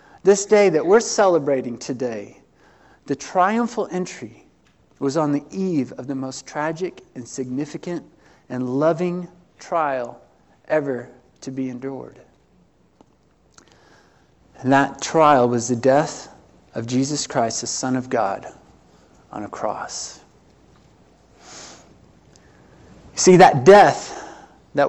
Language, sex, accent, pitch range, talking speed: English, male, American, 125-150 Hz, 110 wpm